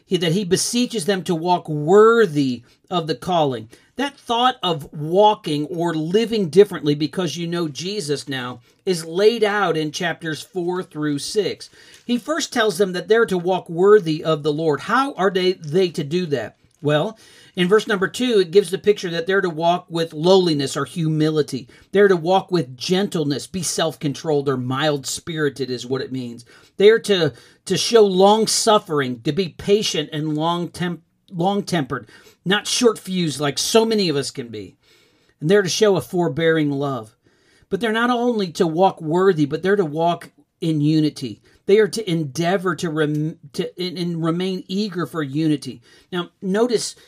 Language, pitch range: English, 155-205 Hz